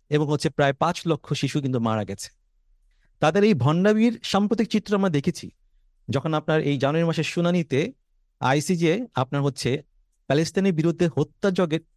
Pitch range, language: 125-180 Hz, Bengali